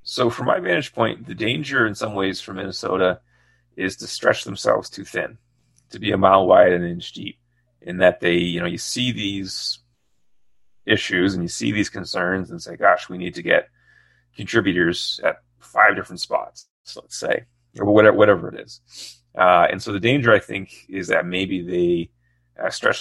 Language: English